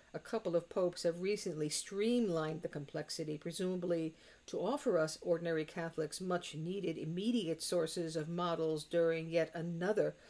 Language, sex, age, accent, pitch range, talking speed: English, female, 50-69, American, 160-195 Hz, 135 wpm